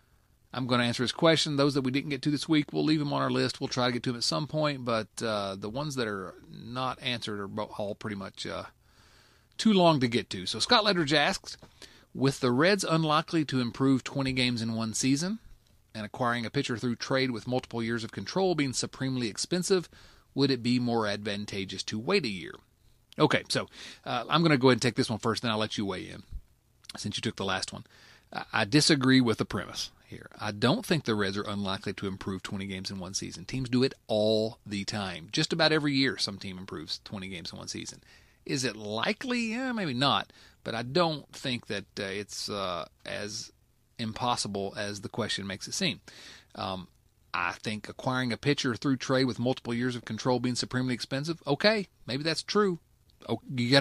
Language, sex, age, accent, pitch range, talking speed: English, male, 40-59, American, 110-140 Hz, 215 wpm